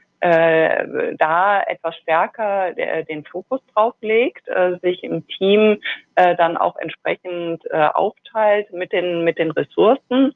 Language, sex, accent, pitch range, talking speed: German, female, German, 160-195 Hz, 140 wpm